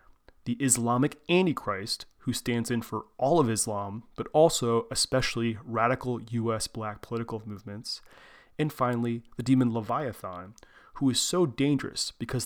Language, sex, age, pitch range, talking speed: English, male, 30-49, 110-130 Hz, 135 wpm